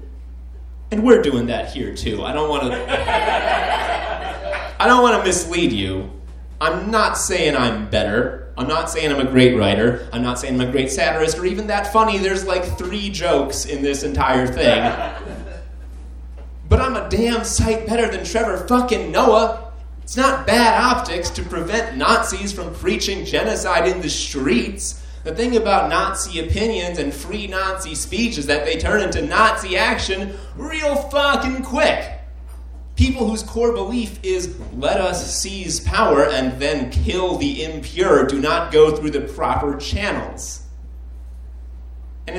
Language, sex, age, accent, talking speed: English, male, 30-49, American, 155 wpm